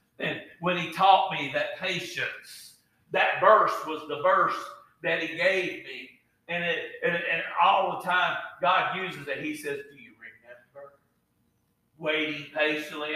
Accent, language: American, English